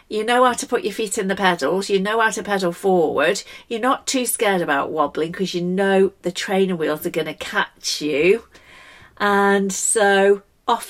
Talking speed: 200 wpm